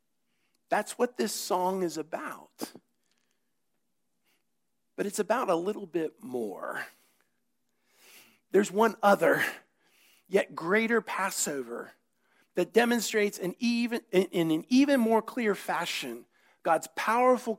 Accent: American